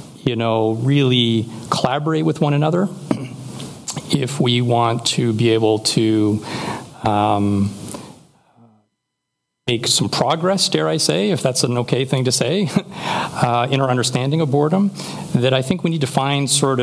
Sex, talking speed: male, 150 wpm